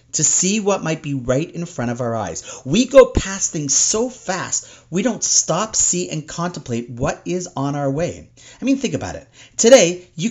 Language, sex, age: English, male, 40-59